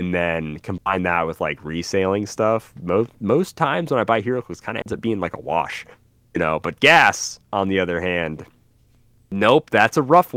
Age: 30-49